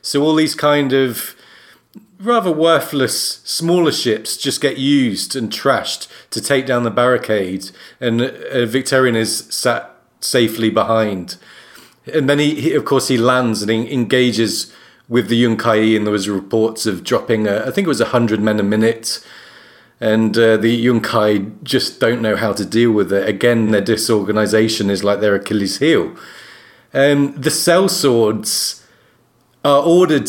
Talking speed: 160 wpm